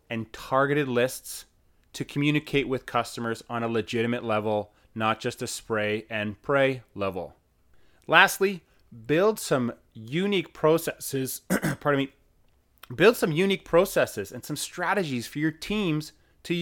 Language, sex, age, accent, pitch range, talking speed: English, male, 30-49, American, 115-160 Hz, 130 wpm